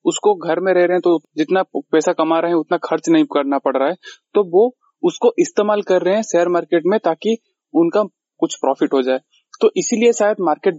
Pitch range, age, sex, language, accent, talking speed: 155-195 Hz, 20-39, male, Hindi, native, 215 wpm